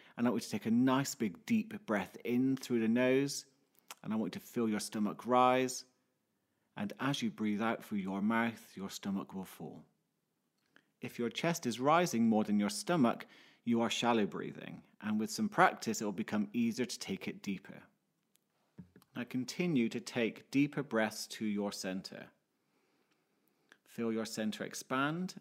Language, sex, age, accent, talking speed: English, male, 30-49, British, 175 wpm